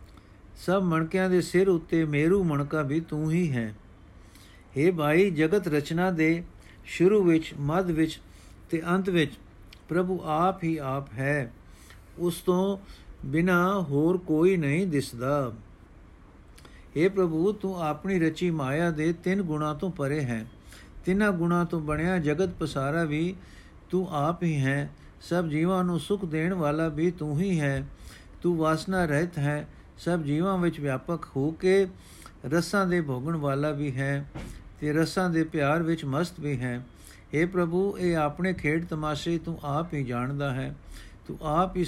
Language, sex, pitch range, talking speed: Punjabi, male, 140-175 Hz, 150 wpm